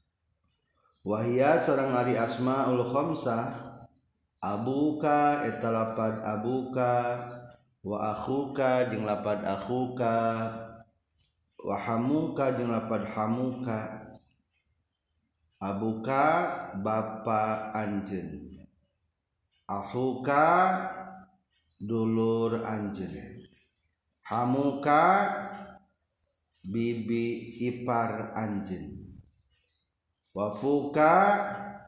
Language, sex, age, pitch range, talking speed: Indonesian, male, 50-69, 100-130 Hz, 45 wpm